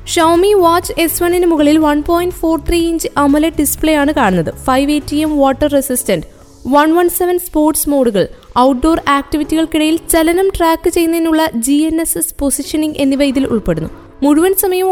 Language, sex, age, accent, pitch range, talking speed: Malayalam, female, 20-39, native, 275-335 Hz, 160 wpm